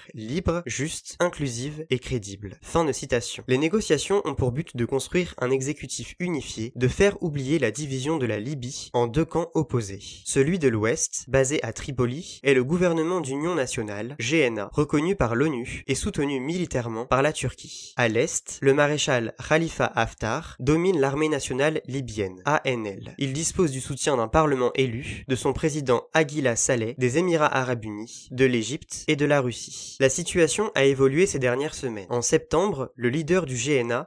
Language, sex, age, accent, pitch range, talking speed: French, male, 20-39, French, 125-160 Hz, 170 wpm